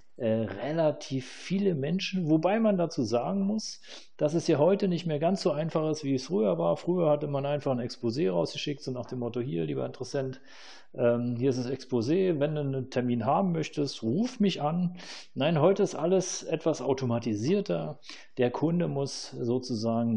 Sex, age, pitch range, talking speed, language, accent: male, 40-59, 120-155 Hz, 185 wpm, German, German